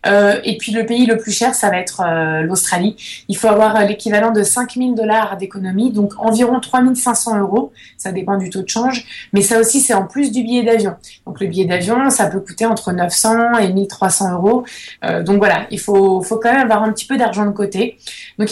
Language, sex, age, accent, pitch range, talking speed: French, female, 20-39, French, 195-230 Hz, 220 wpm